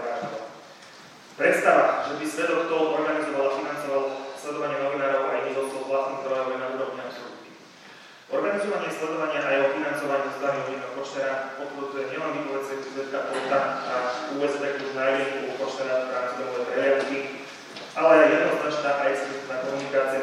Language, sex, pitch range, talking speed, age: Slovak, male, 135-150 Hz, 150 wpm, 20-39